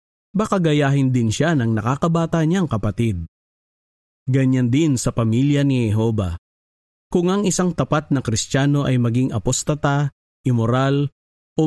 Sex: male